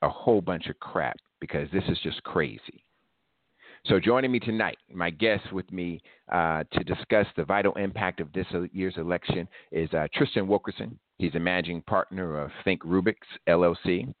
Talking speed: 170 wpm